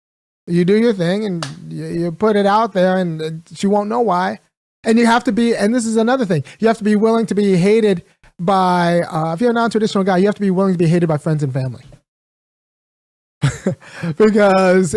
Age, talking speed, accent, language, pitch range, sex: 30-49, 215 wpm, American, English, 170-205 Hz, male